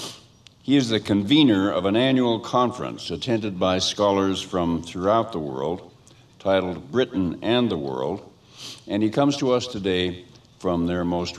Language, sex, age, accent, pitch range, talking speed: English, male, 60-79, American, 95-120 Hz, 155 wpm